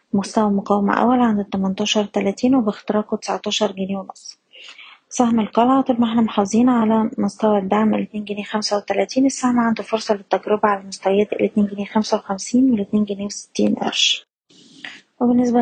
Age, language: 20-39, Arabic